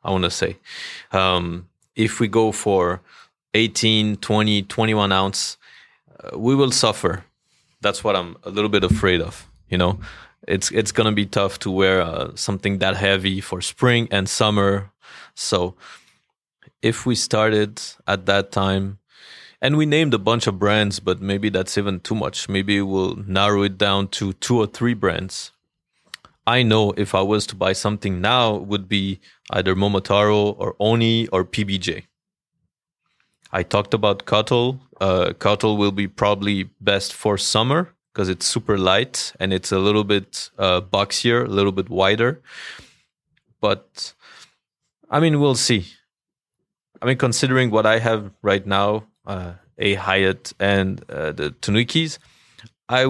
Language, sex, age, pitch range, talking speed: English, male, 30-49, 95-110 Hz, 155 wpm